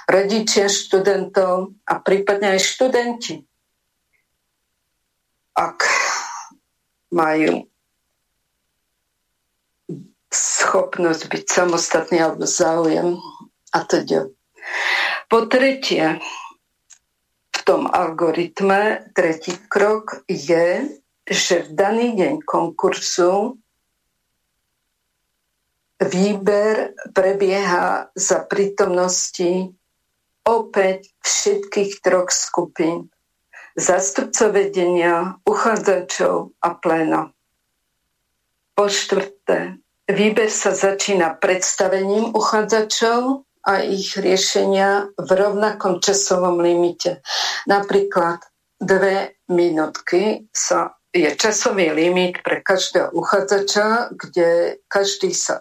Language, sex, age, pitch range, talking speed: Slovak, female, 50-69, 180-205 Hz, 75 wpm